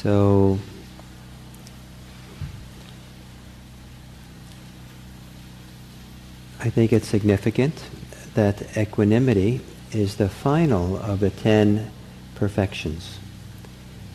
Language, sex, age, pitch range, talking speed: English, male, 50-69, 90-115 Hz, 60 wpm